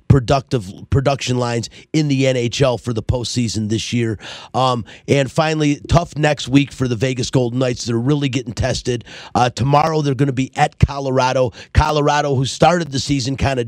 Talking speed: 180 wpm